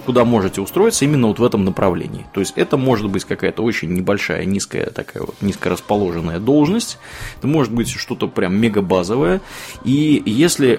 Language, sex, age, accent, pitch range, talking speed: Russian, male, 20-39, native, 90-115 Hz, 160 wpm